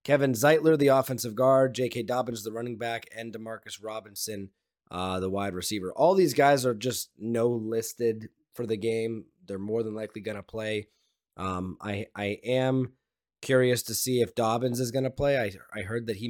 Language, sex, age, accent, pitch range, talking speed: English, male, 20-39, American, 105-130 Hz, 190 wpm